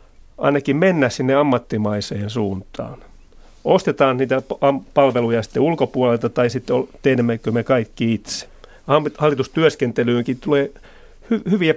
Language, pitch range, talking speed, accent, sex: Finnish, 110-135 Hz, 95 wpm, native, male